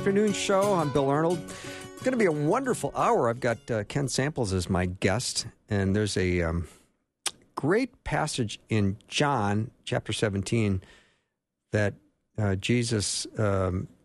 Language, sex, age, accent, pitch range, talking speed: English, male, 50-69, American, 95-120 Hz, 145 wpm